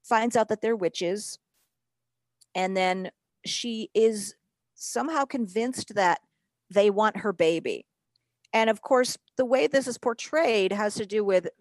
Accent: American